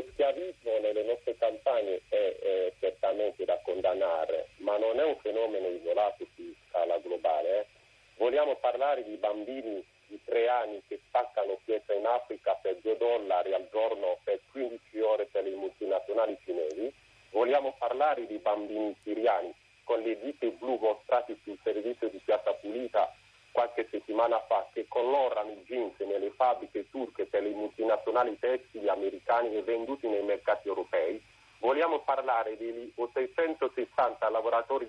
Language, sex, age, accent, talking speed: Italian, male, 40-59, native, 140 wpm